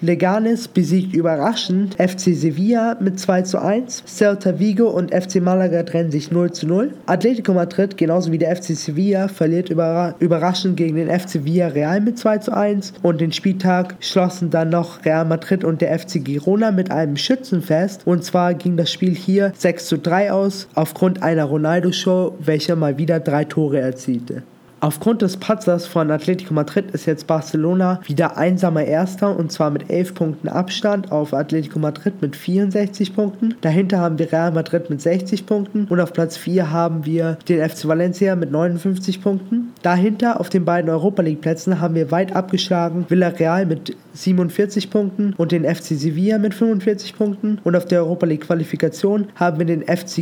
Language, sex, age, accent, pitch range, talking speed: German, male, 20-39, German, 165-195 Hz, 175 wpm